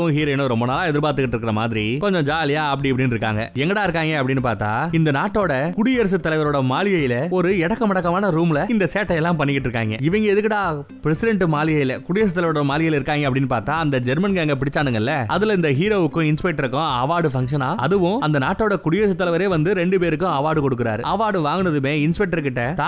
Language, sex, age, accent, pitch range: Tamil, male, 20-39, native, 140-180 Hz